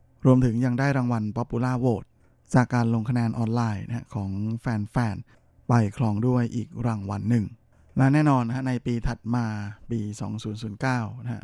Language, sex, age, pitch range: Thai, male, 20-39, 110-125 Hz